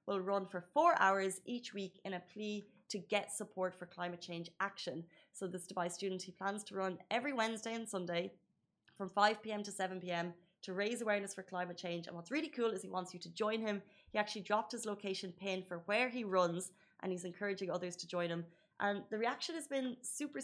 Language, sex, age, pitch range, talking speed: Arabic, female, 20-39, 175-205 Hz, 215 wpm